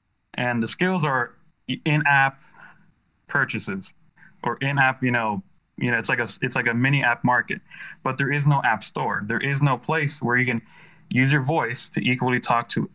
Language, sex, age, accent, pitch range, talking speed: English, male, 20-39, American, 115-150 Hz, 190 wpm